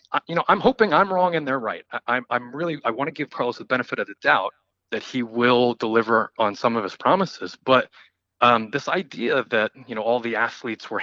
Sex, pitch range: male, 120-145 Hz